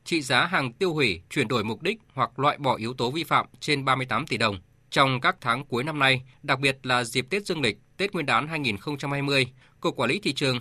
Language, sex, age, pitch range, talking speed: Vietnamese, male, 20-39, 125-160 Hz, 240 wpm